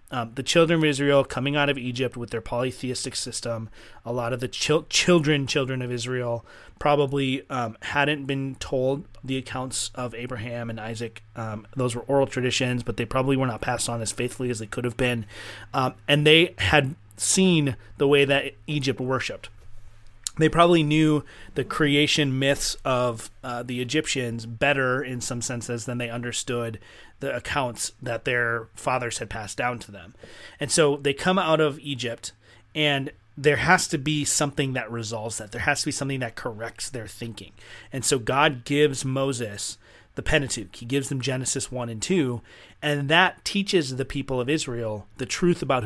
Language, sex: English, male